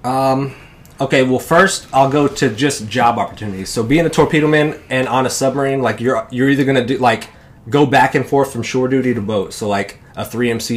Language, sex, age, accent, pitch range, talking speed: English, male, 20-39, American, 115-140 Hz, 215 wpm